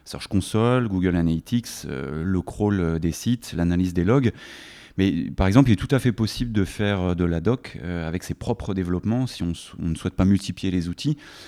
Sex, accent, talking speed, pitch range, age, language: male, French, 210 wpm, 85-110 Hz, 30-49, French